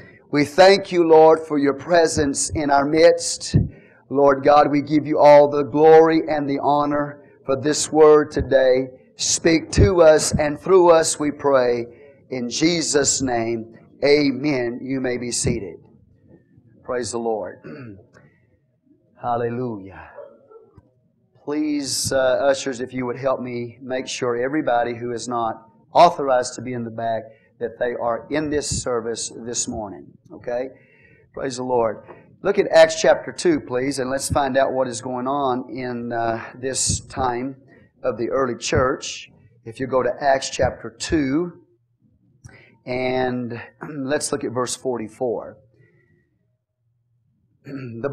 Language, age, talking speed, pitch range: English, 40-59, 140 wpm, 120-150 Hz